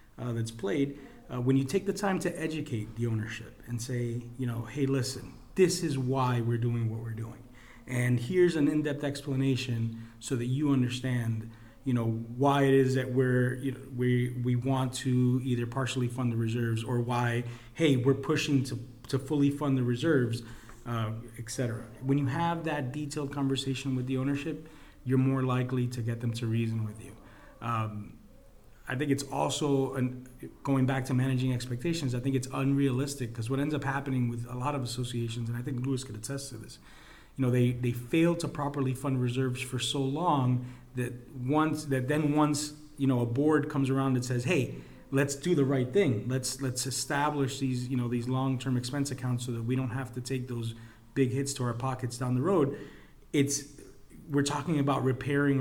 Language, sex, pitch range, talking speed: English, male, 120-140 Hz, 195 wpm